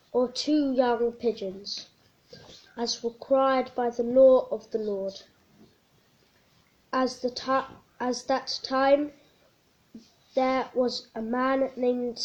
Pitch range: 235-265 Hz